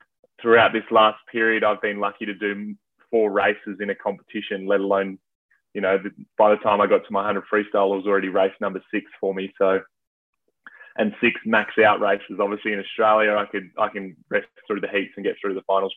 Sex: male